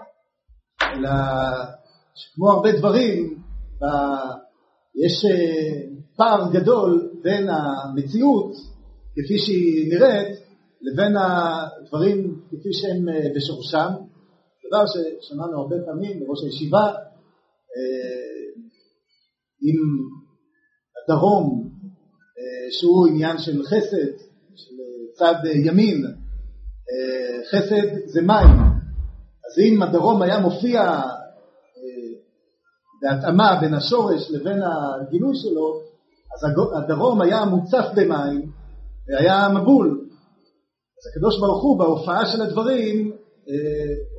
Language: Hebrew